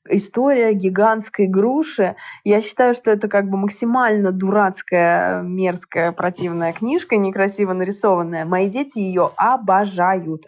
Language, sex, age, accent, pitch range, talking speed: Russian, female, 20-39, native, 190-240 Hz, 115 wpm